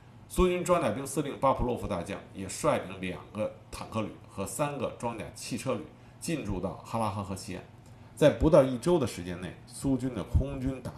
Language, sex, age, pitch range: Chinese, male, 50-69, 105-130 Hz